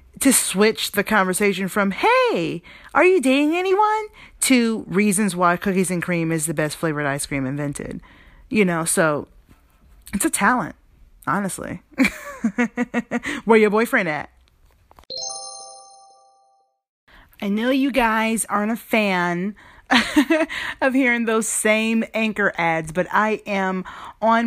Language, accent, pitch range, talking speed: English, American, 175-240 Hz, 125 wpm